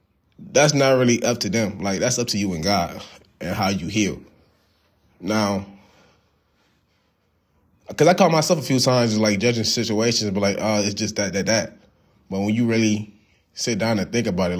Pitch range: 100-130 Hz